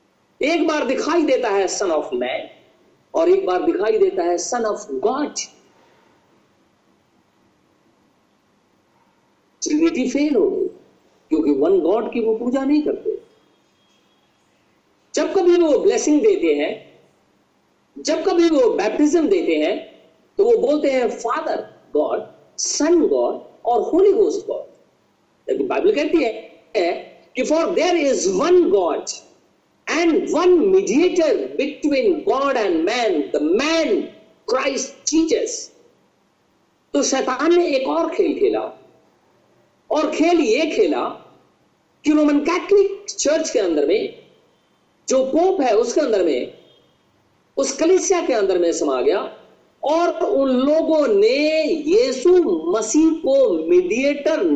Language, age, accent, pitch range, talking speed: Hindi, 50-69, native, 300-395 Hz, 120 wpm